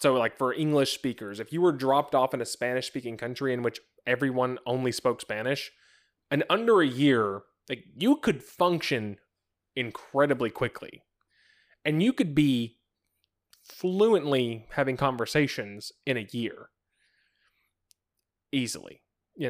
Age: 20-39